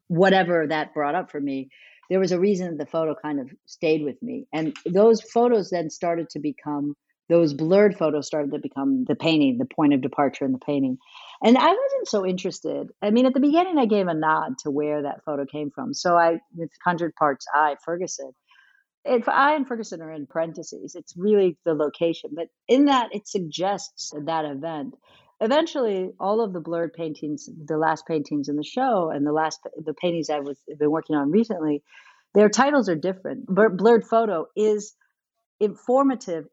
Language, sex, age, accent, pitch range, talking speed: English, female, 50-69, American, 150-200 Hz, 195 wpm